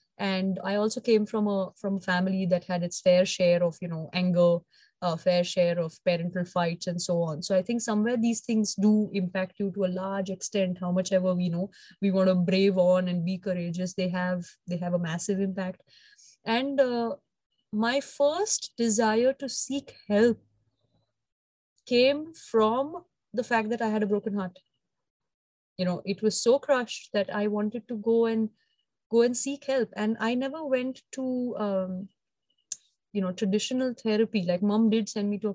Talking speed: 185 wpm